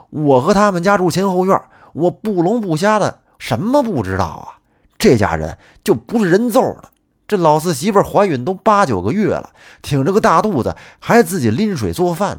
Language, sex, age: Chinese, male, 30-49